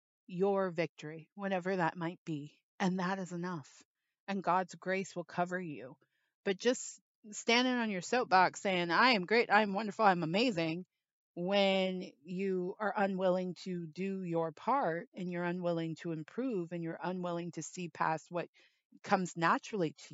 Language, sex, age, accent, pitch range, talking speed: English, female, 30-49, American, 170-210 Hz, 160 wpm